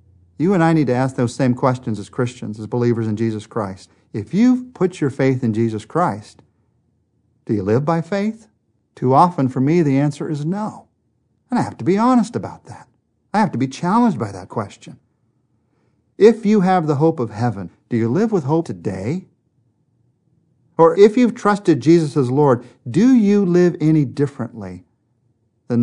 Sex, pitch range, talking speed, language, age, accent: male, 115-170 Hz, 185 wpm, English, 50-69, American